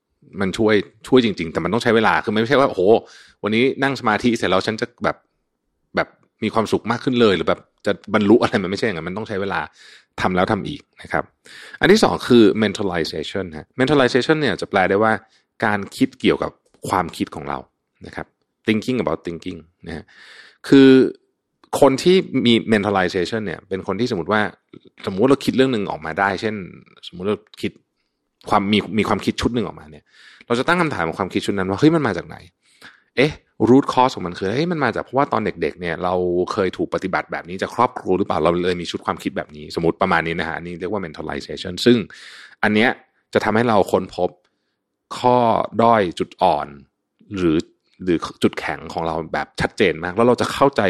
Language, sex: Thai, male